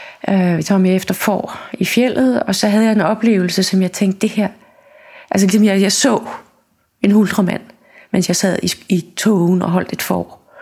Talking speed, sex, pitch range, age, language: 200 wpm, female, 185-215 Hz, 30-49, Danish